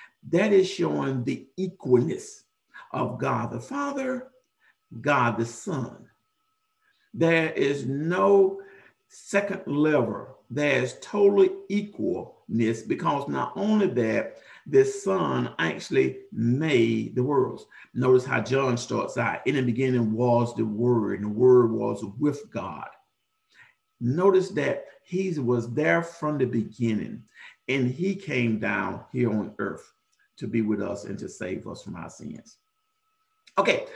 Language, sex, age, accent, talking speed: English, male, 50-69, American, 135 wpm